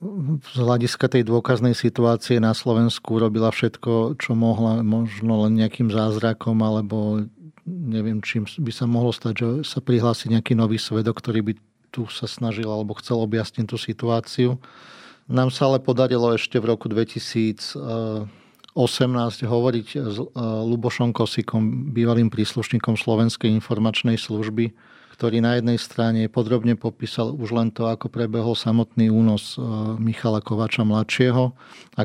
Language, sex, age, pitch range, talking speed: Slovak, male, 40-59, 110-120 Hz, 135 wpm